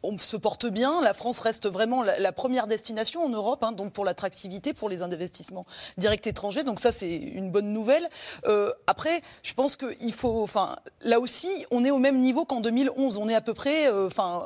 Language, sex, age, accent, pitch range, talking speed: French, female, 30-49, French, 195-260 Hz, 215 wpm